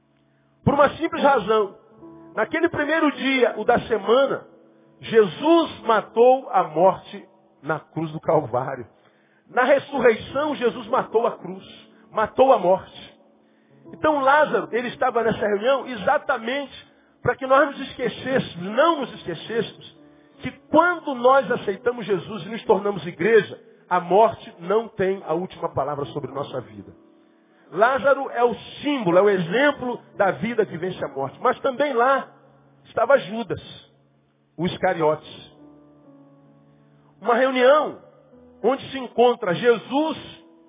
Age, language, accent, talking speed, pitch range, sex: 50-69, Portuguese, Brazilian, 130 wpm, 180-275 Hz, male